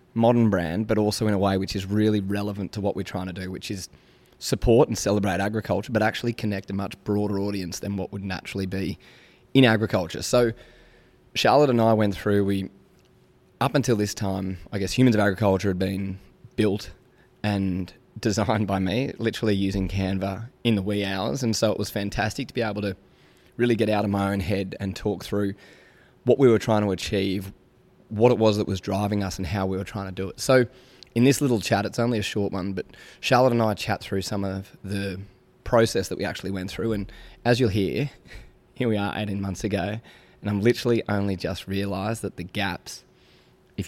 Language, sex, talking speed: English, male, 210 wpm